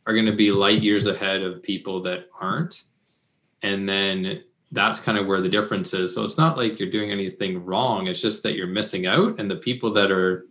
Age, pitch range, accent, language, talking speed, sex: 20-39, 100-120 Hz, American, English, 215 wpm, male